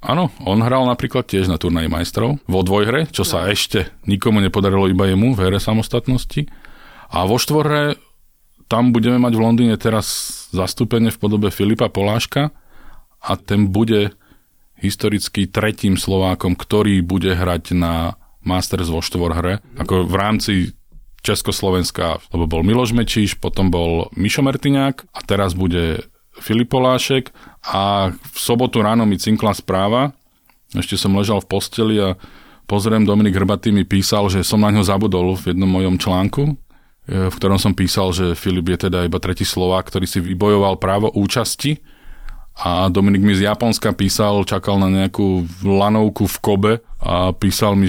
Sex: male